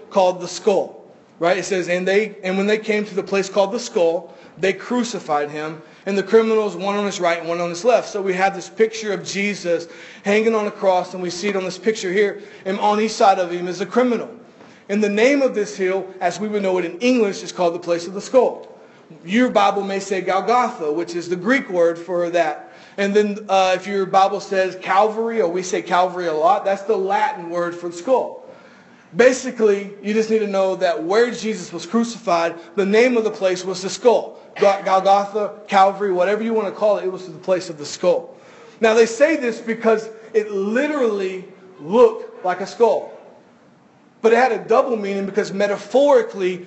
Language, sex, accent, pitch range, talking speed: English, male, American, 185-225 Hz, 215 wpm